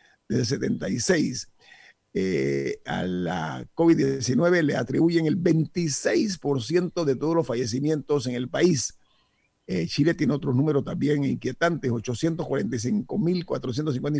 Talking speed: 100 wpm